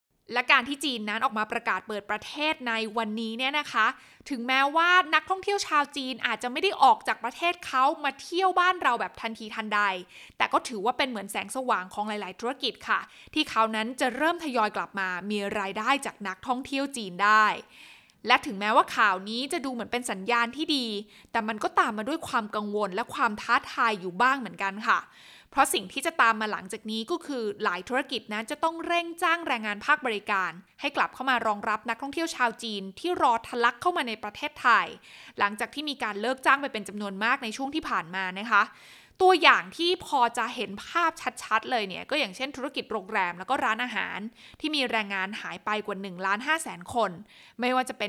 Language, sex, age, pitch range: Thai, female, 20-39, 210-275 Hz